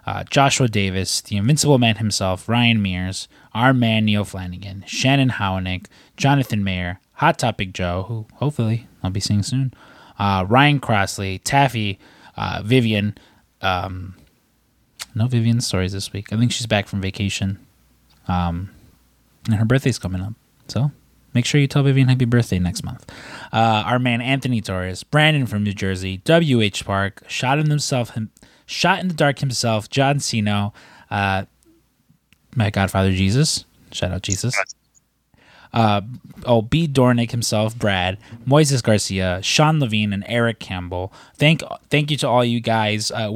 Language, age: English, 20-39